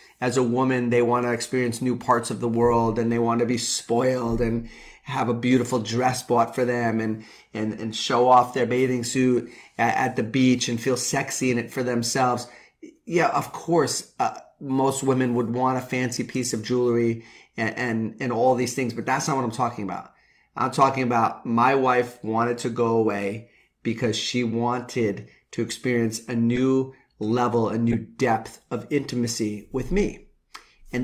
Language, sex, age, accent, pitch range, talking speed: English, male, 30-49, American, 115-130 Hz, 185 wpm